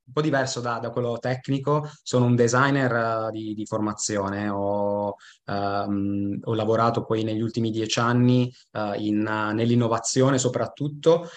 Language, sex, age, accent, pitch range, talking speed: Italian, male, 20-39, native, 110-125 Hz, 135 wpm